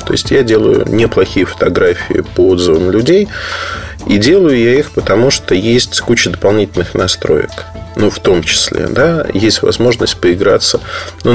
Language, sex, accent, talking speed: Russian, male, native, 155 wpm